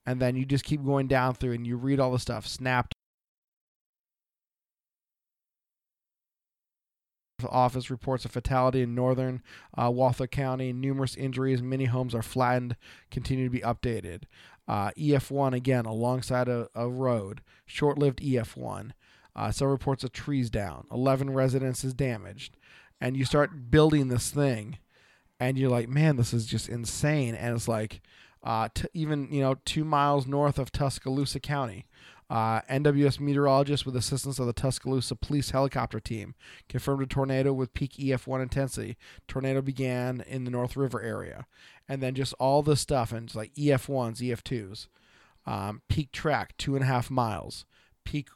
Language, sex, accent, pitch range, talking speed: English, male, American, 120-135 Hz, 155 wpm